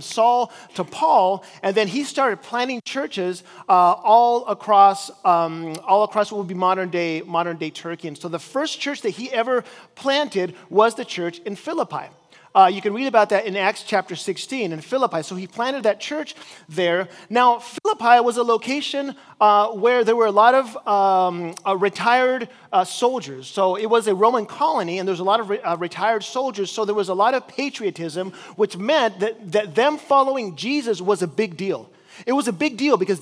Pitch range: 190-250 Hz